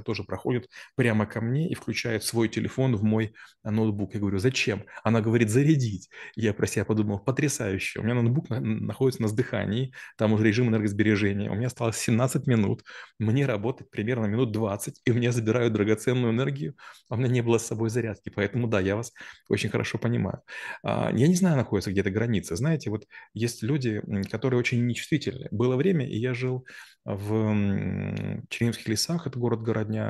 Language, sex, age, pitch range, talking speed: Russian, male, 20-39, 105-125 Hz, 175 wpm